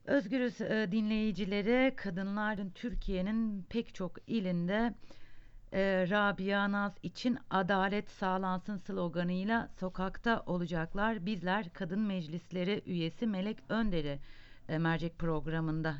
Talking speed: 90 wpm